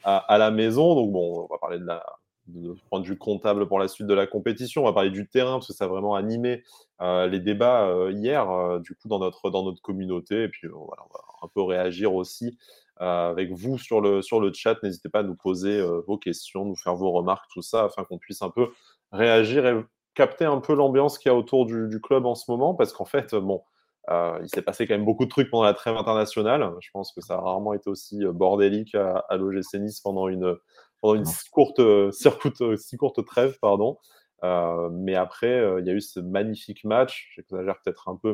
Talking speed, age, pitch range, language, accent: 235 wpm, 20-39, 95-115 Hz, French, French